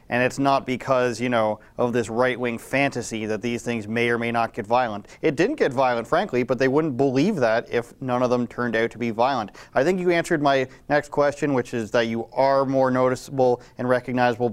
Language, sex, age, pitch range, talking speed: English, male, 30-49, 115-135 Hz, 225 wpm